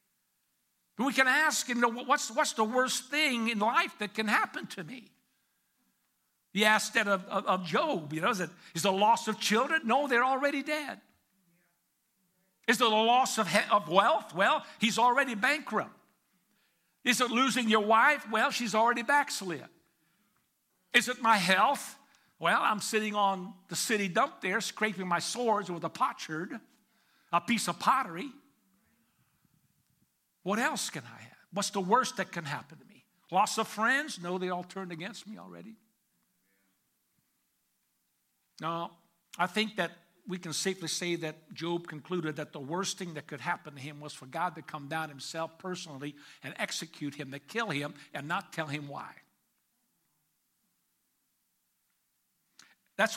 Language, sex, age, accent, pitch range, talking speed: English, male, 60-79, American, 170-235 Hz, 165 wpm